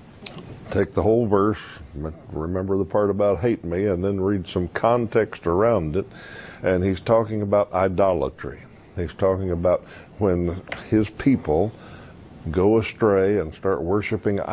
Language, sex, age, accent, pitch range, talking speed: English, male, 60-79, American, 85-105 Hz, 135 wpm